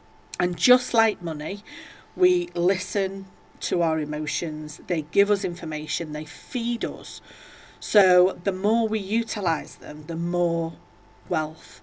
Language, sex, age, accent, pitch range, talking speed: English, female, 40-59, British, 160-210 Hz, 125 wpm